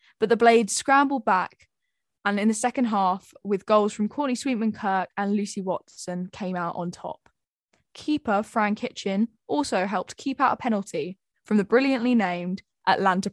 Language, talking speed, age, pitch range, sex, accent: English, 165 wpm, 10-29, 185-235 Hz, female, British